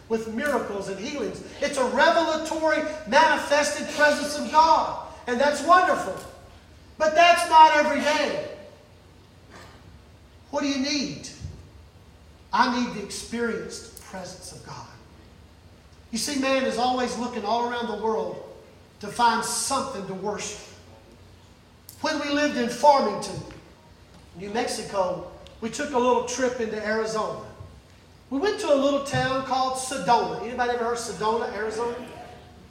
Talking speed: 135 wpm